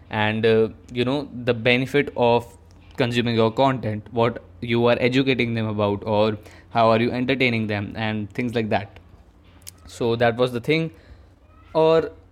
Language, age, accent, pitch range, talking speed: Hindi, 20-39, native, 115-130 Hz, 155 wpm